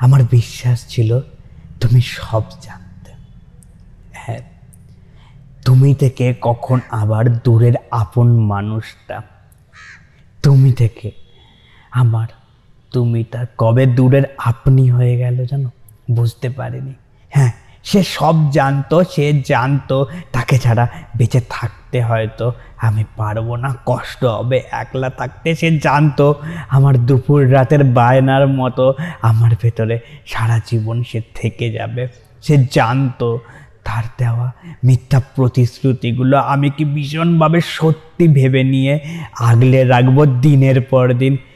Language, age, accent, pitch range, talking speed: Bengali, 20-39, native, 115-140 Hz, 95 wpm